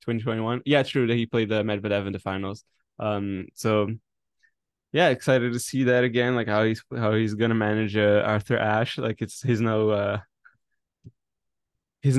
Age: 10-29